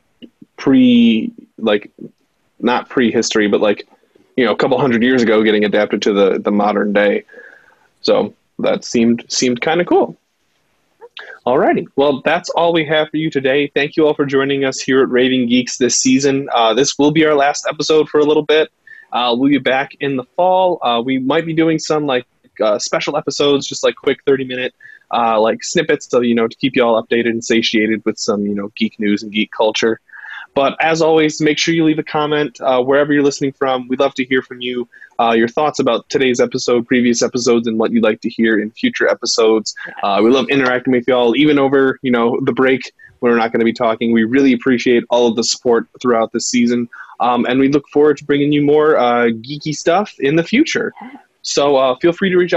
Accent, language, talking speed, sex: American, English, 215 wpm, male